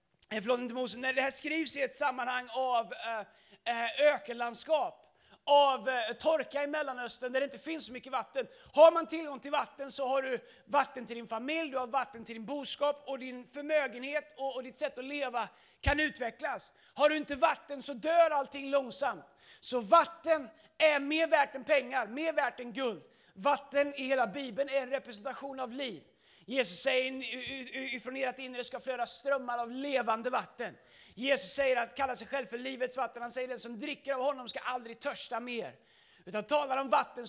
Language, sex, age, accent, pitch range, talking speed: Swedish, male, 30-49, native, 245-285 Hz, 185 wpm